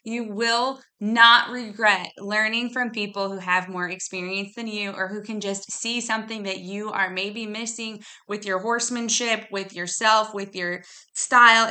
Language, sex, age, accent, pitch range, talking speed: English, female, 20-39, American, 200-245 Hz, 165 wpm